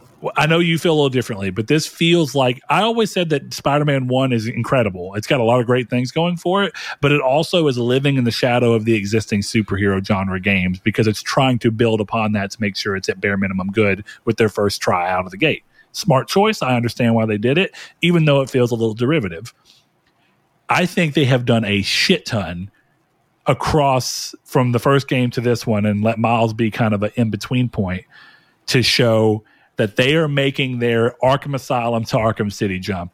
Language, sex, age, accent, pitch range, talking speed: English, male, 40-59, American, 110-140 Hz, 215 wpm